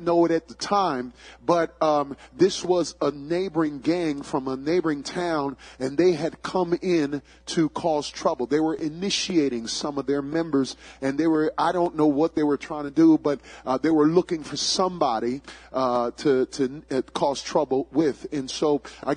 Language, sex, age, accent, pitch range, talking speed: English, male, 30-49, American, 140-175 Hz, 190 wpm